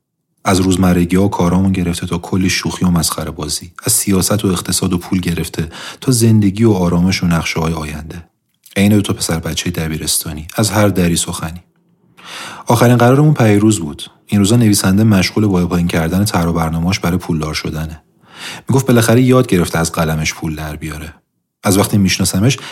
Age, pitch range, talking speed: 30-49, 85-110 Hz, 165 wpm